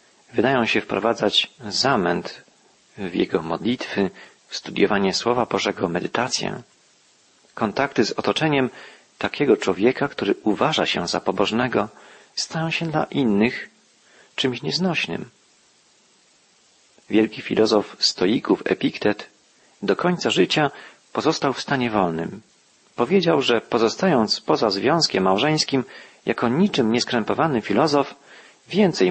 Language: Polish